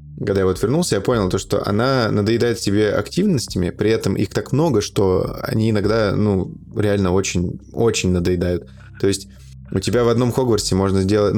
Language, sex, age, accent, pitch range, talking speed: Russian, male, 20-39, native, 95-115 Hz, 175 wpm